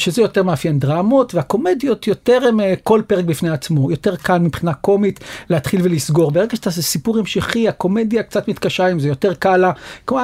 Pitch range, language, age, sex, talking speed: 170-215 Hz, Hebrew, 40-59, male, 180 wpm